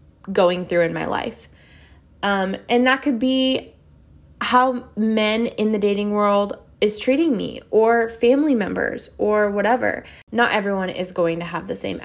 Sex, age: female, 20-39